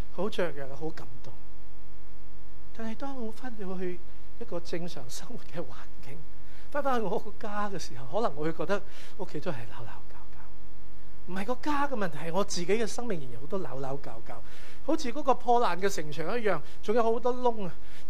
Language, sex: Chinese, male